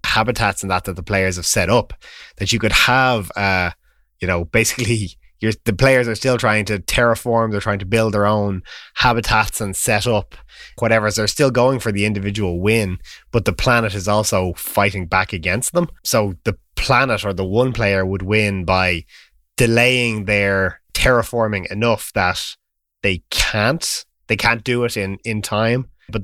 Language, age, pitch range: English, 20-39, 95-120 Hz